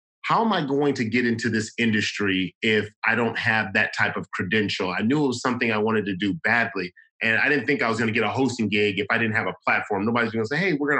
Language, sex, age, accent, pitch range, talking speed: English, male, 30-49, American, 105-125 Hz, 285 wpm